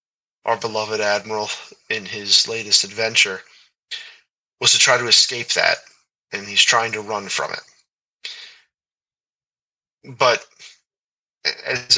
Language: English